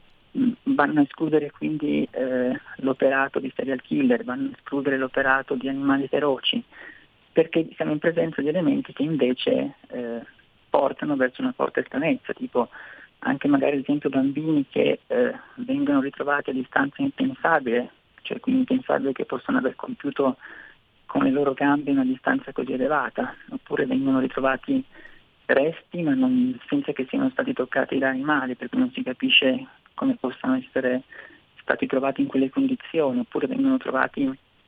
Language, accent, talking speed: Italian, native, 150 wpm